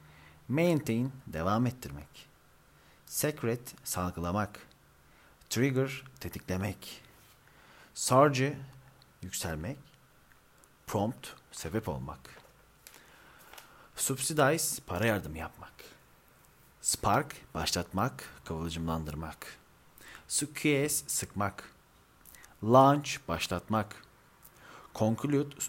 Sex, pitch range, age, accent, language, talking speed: male, 90-140 Hz, 40-59, native, Turkish, 55 wpm